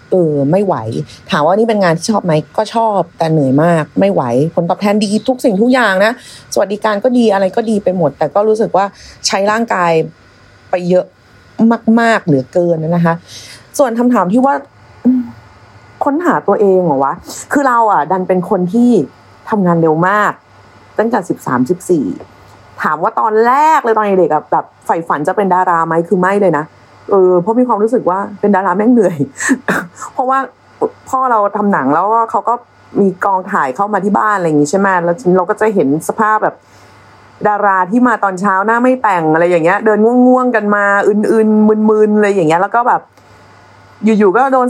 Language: Thai